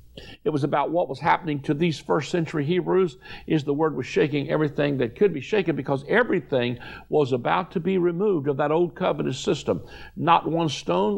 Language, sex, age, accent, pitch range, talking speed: English, male, 60-79, American, 130-165 Hz, 195 wpm